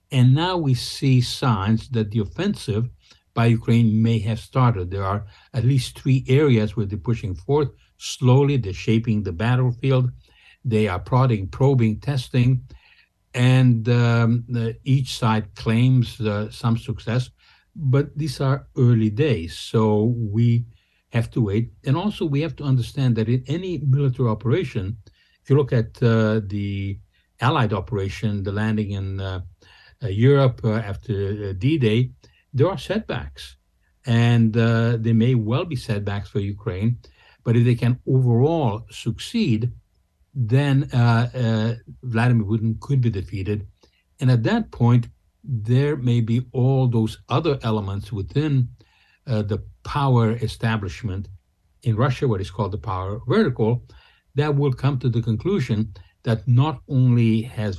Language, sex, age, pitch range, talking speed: English, male, 60-79, 105-125 Hz, 145 wpm